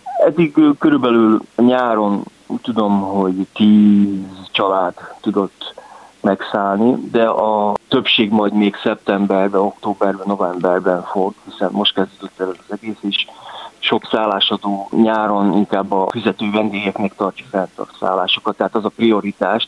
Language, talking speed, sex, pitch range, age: Hungarian, 120 wpm, male, 95-110 Hz, 30-49